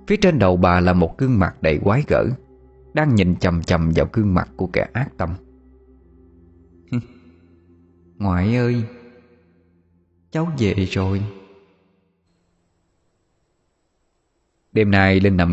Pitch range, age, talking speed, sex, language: 85-115 Hz, 20-39, 120 wpm, male, Vietnamese